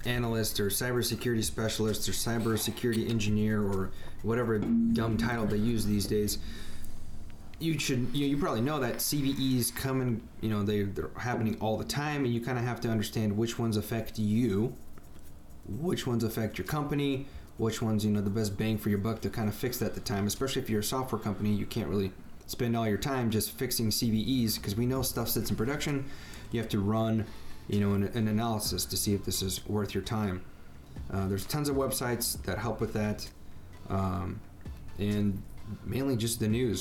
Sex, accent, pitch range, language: male, American, 100-120 Hz, English